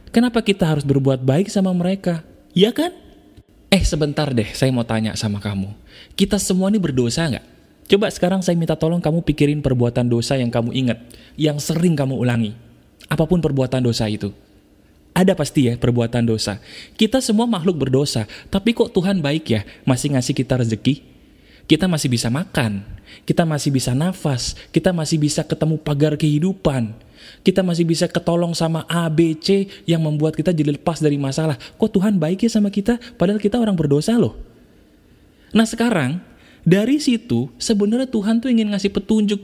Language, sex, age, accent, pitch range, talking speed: Indonesian, male, 20-39, native, 135-205 Hz, 165 wpm